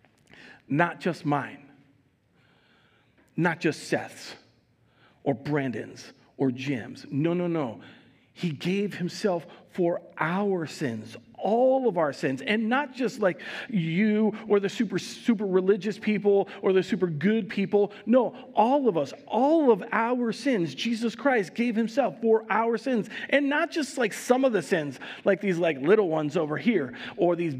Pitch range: 175-235 Hz